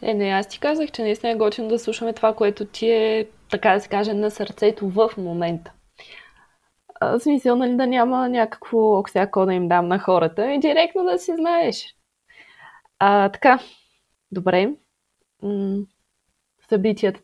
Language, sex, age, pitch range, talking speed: Bulgarian, female, 20-39, 185-230 Hz, 155 wpm